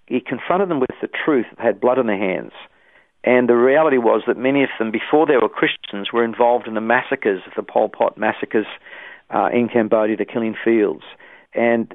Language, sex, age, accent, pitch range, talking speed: English, male, 50-69, Australian, 110-125 Hz, 210 wpm